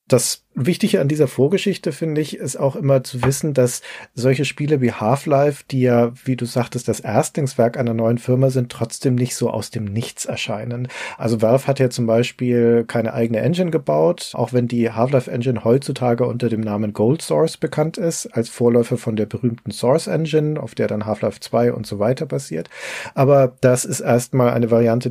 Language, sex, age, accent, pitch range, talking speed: German, male, 40-59, German, 115-135 Hz, 185 wpm